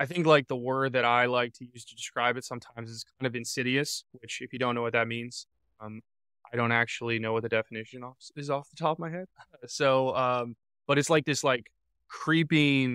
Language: English